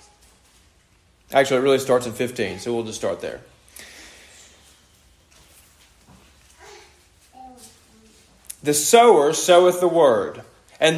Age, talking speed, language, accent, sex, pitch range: 30-49, 95 wpm, English, American, male, 135-205 Hz